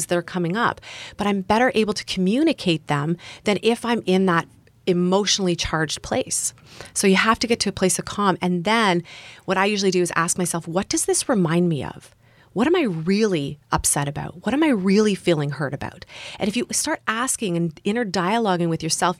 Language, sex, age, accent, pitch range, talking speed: English, female, 30-49, American, 165-220 Hz, 210 wpm